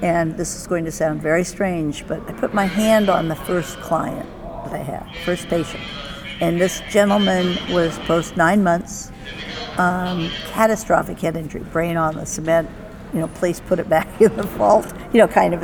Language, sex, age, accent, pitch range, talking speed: English, female, 60-79, American, 175-205 Hz, 190 wpm